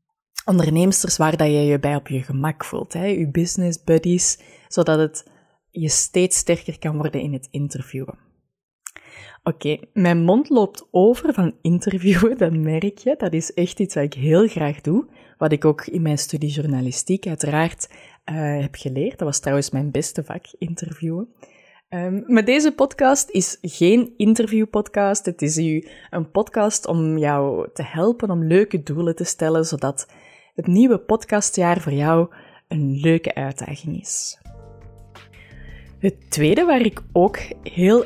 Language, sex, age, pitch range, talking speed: Dutch, female, 20-39, 150-200 Hz, 150 wpm